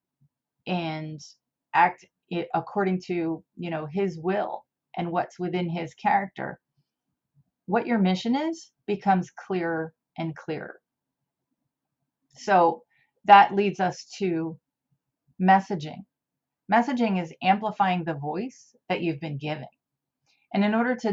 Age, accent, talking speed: 30-49, American, 115 wpm